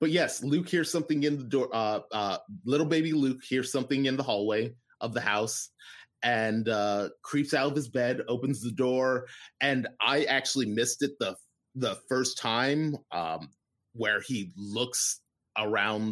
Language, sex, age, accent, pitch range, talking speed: English, male, 30-49, American, 110-135 Hz, 170 wpm